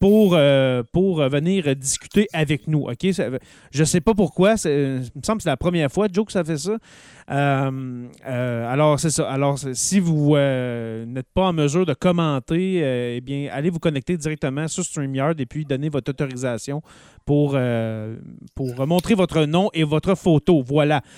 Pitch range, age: 135-180 Hz, 30-49